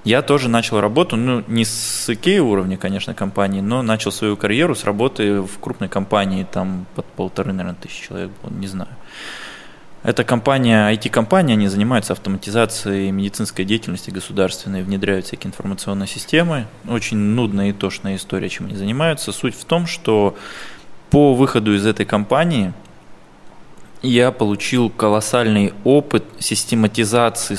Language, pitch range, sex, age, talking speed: Russian, 100-120 Hz, male, 20-39, 140 wpm